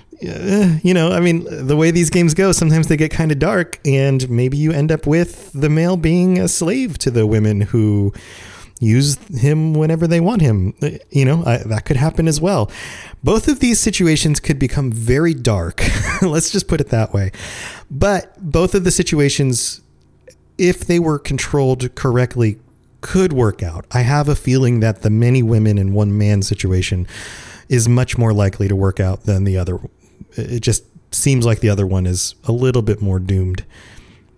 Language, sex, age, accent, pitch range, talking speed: English, male, 30-49, American, 105-150 Hz, 190 wpm